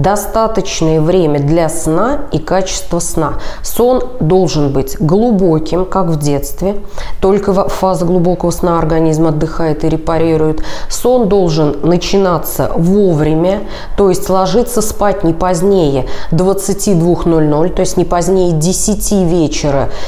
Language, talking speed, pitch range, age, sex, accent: Russian, 115 wpm, 160-195 Hz, 20-39, female, native